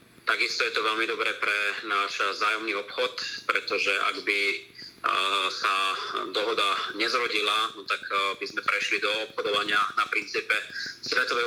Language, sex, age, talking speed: Slovak, male, 30-49, 130 wpm